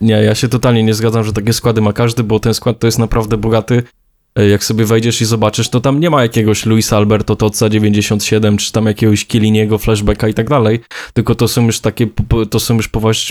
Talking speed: 220 wpm